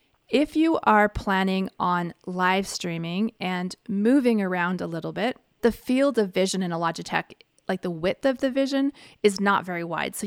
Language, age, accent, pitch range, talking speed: English, 30-49, American, 180-220 Hz, 180 wpm